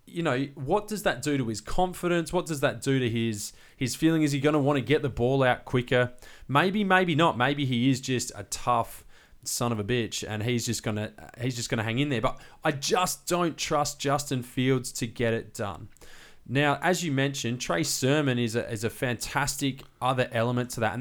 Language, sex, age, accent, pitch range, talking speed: English, male, 20-39, Australian, 115-140 Hz, 225 wpm